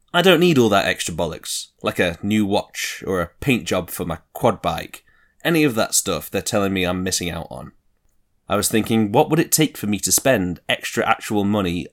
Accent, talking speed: British, 220 wpm